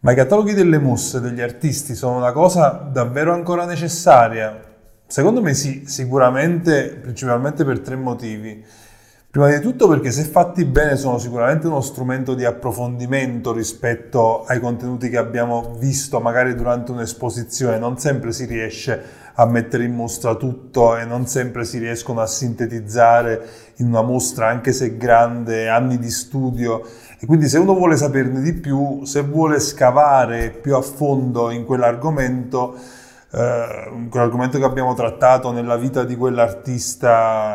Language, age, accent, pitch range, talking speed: Italian, 30-49, native, 115-140 Hz, 150 wpm